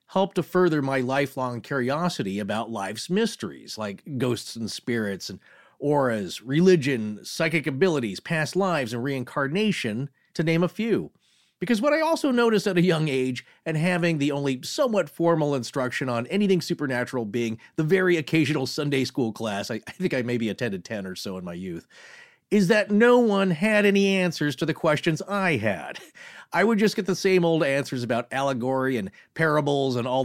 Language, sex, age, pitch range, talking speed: English, male, 40-59, 130-185 Hz, 180 wpm